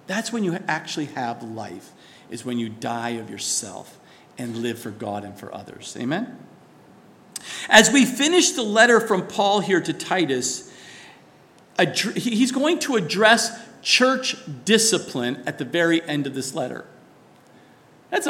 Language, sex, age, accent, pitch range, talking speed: English, male, 50-69, American, 180-250 Hz, 145 wpm